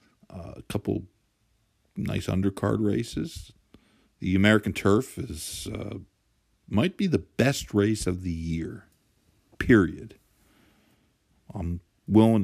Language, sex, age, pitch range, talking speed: English, male, 50-69, 90-110 Hz, 105 wpm